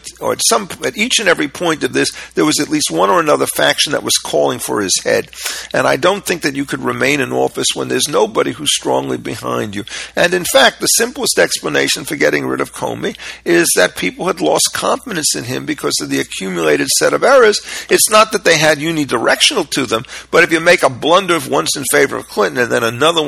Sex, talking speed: male, 230 wpm